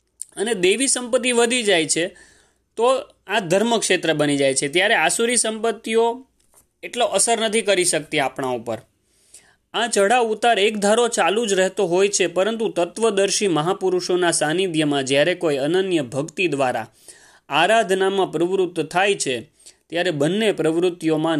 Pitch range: 150-200 Hz